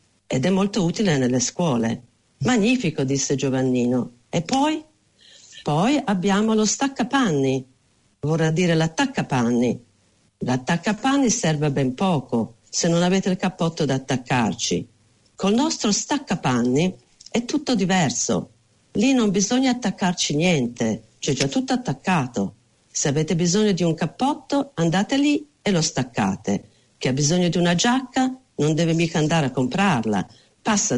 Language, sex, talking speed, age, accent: Italian, female, 130 wpm, 50-69, native